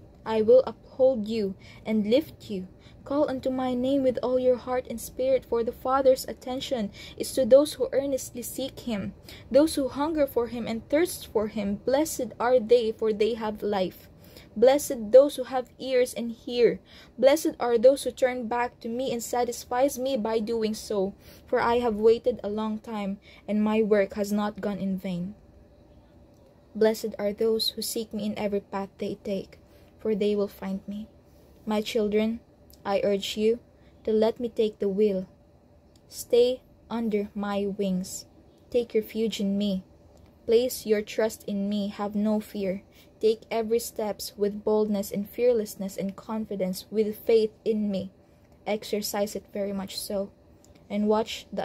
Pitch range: 205-245 Hz